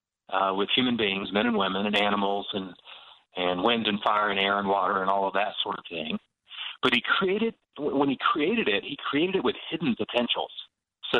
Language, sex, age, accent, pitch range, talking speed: English, male, 40-59, American, 100-120 Hz, 210 wpm